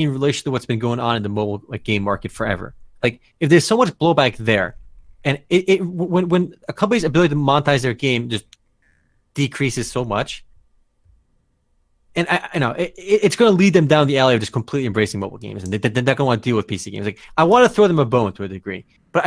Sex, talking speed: male, 245 wpm